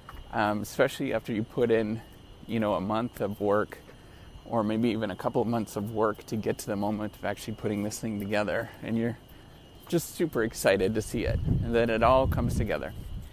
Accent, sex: American, male